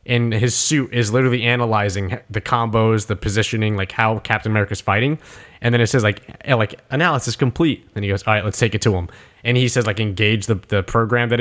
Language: English